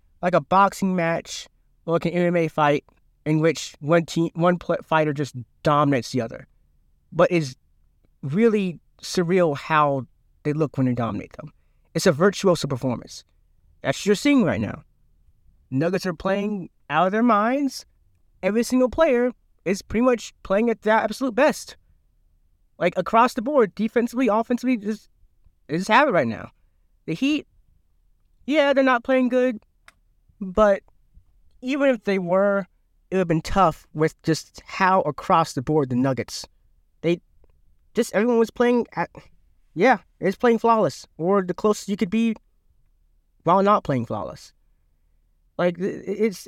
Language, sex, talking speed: English, male, 150 wpm